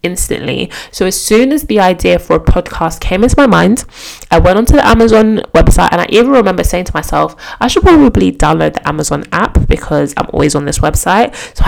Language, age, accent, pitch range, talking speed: English, 20-39, British, 155-195 Hz, 210 wpm